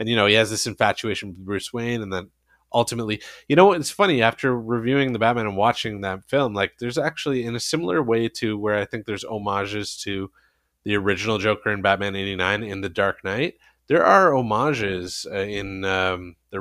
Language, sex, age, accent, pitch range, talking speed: English, male, 20-39, American, 95-115 Hz, 200 wpm